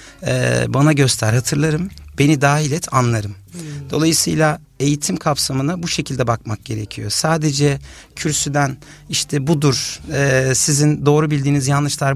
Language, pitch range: Turkish, 115-150 Hz